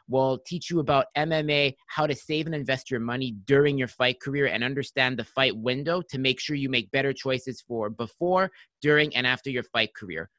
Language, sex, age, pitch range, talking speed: English, male, 30-49, 135-185 Hz, 210 wpm